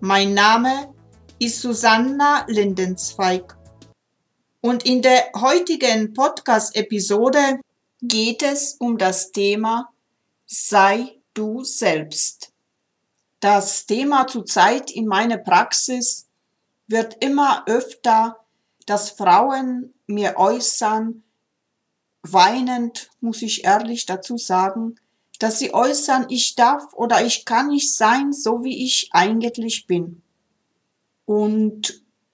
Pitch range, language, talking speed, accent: 200-250 Hz, German, 100 wpm, German